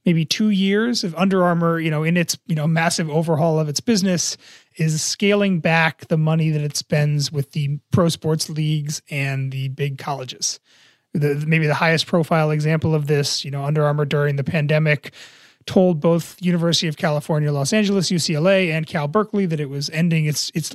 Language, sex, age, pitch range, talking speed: English, male, 30-49, 145-170 Hz, 190 wpm